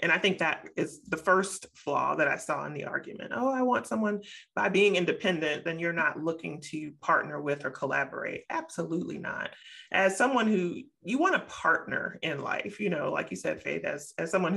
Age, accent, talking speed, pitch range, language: 30-49, American, 205 wpm, 165-205 Hz, English